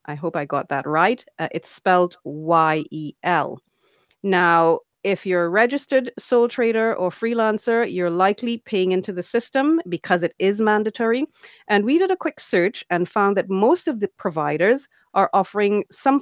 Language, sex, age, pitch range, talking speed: Finnish, female, 30-49, 165-225 Hz, 165 wpm